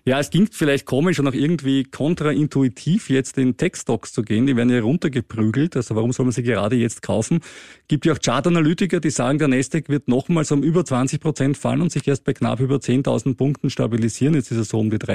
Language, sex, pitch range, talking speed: German, male, 120-150 Hz, 220 wpm